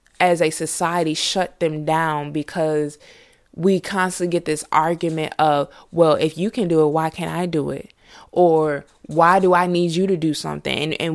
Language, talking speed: English, 185 wpm